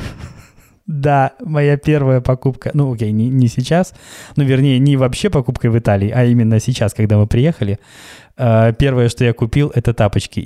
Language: Russian